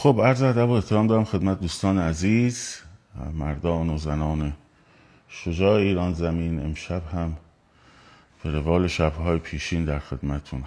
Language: Persian